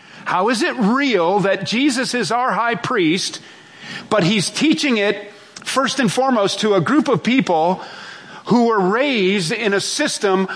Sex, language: male, English